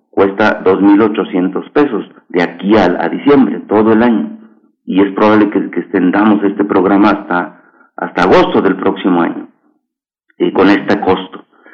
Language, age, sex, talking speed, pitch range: Italian, 50-69, male, 150 wpm, 100-125 Hz